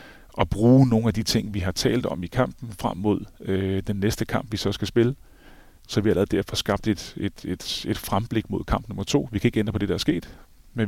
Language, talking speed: Danish, 265 wpm